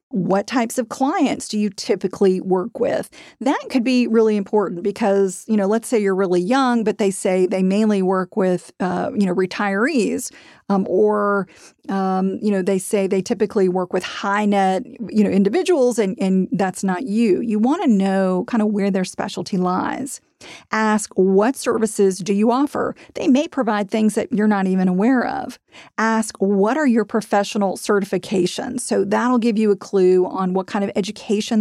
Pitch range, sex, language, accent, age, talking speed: 195-240 Hz, female, English, American, 40-59, 185 wpm